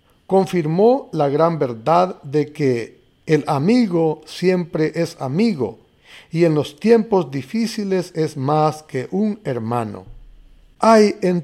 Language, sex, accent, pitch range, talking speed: Spanish, male, Mexican, 135-195 Hz, 120 wpm